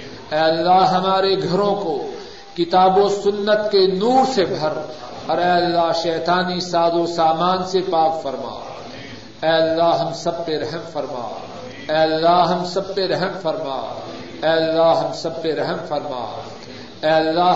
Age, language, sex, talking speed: 50-69, Urdu, male, 155 wpm